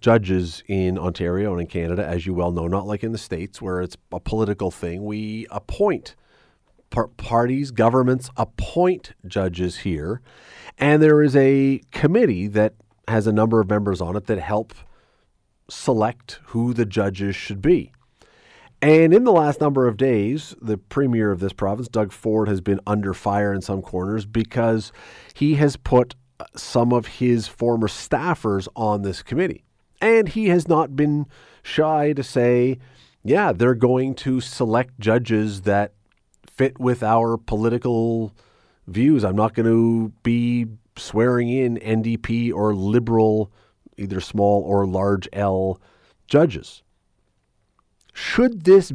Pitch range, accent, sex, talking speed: 100-130 Hz, American, male, 145 wpm